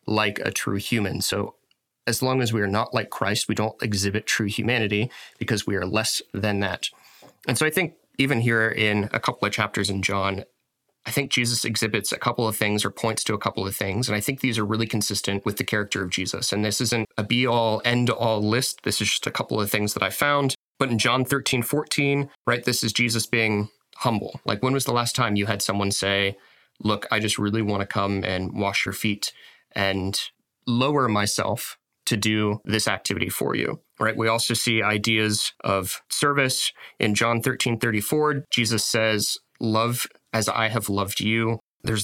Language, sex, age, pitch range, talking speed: English, male, 30-49, 105-120 Hz, 205 wpm